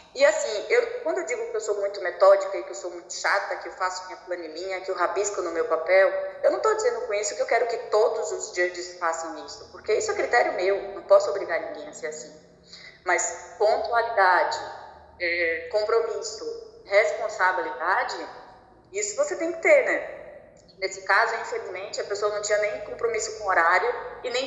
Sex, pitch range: female, 185-270 Hz